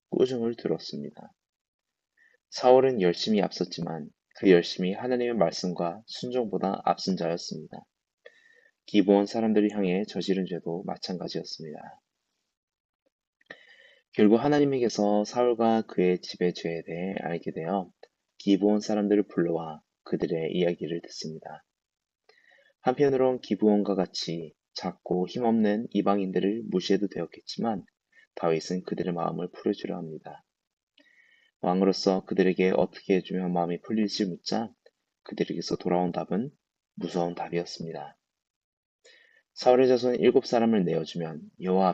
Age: 20-39